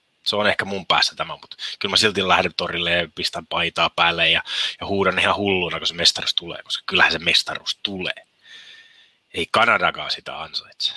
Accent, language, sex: native, Finnish, male